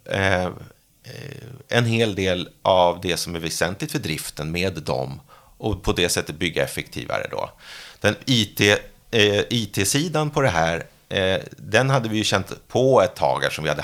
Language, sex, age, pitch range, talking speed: Swedish, male, 30-49, 90-130 Hz, 170 wpm